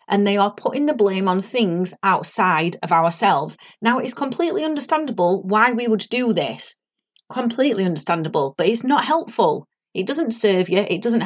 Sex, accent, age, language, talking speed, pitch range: female, British, 30-49, English, 170 wpm, 195-245 Hz